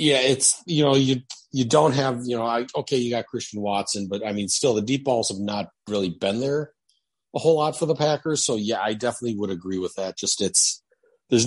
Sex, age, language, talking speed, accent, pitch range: male, 40-59, English, 235 wpm, American, 105-135 Hz